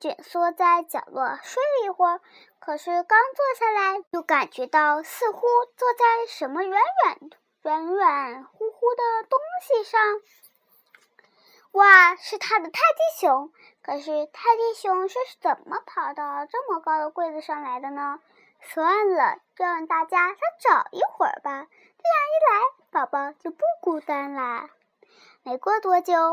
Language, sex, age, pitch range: Chinese, male, 20-39, 305-440 Hz